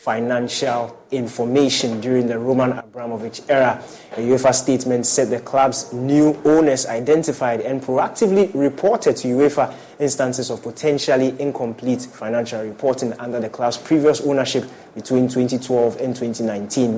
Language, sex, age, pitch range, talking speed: English, male, 20-39, 120-135 Hz, 125 wpm